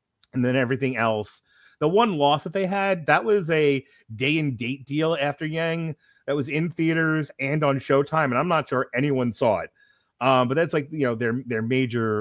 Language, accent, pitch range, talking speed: English, American, 110-145 Hz, 205 wpm